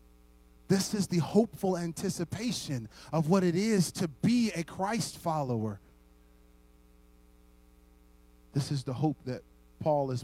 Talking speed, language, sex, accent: 125 wpm, English, male, American